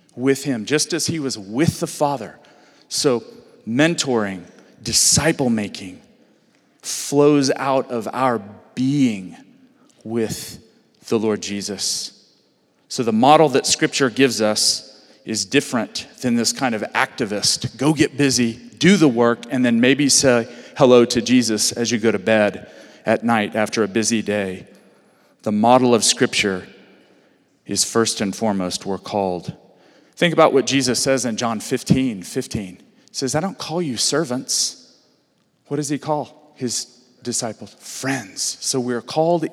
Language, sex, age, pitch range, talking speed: English, male, 40-59, 110-140 Hz, 145 wpm